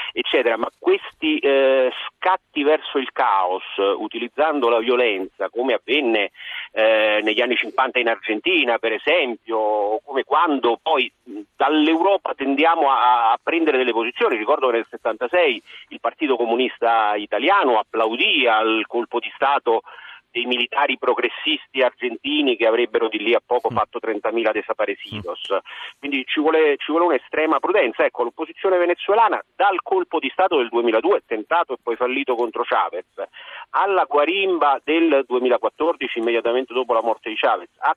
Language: Italian